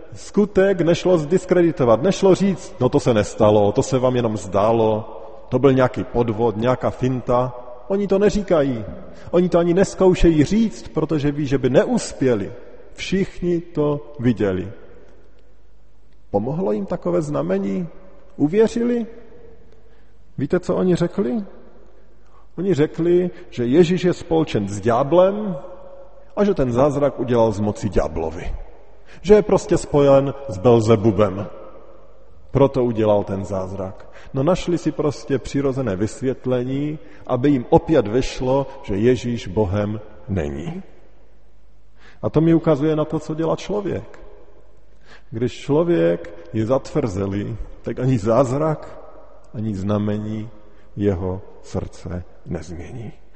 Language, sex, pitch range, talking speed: Slovak, male, 110-170 Hz, 120 wpm